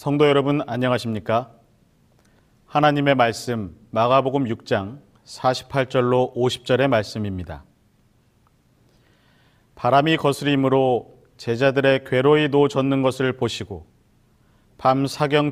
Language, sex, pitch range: Korean, male, 115-140 Hz